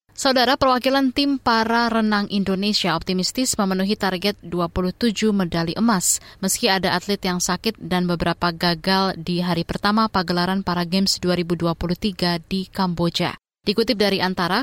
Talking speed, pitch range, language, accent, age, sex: 130 wpm, 175-215 Hz, Indonesian, native, 20-39, female